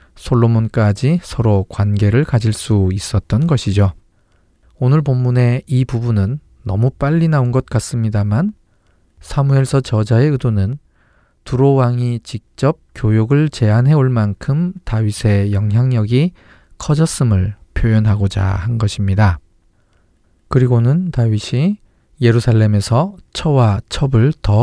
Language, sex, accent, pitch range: Korean, male, native, 100-130 Hz